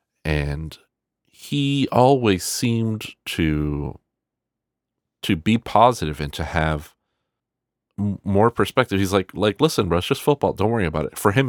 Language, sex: English, male